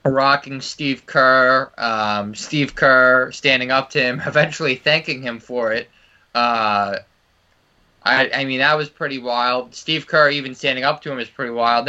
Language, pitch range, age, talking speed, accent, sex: English, 125-170 Hz, 20-39, 165 wpm, American, male